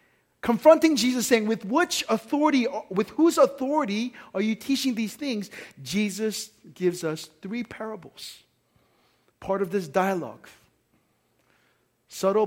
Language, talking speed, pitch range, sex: English, 115 wpm, 195-260 Hz, male